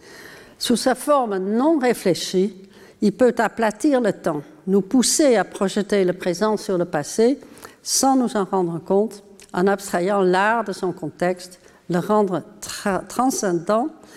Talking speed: 140 wpm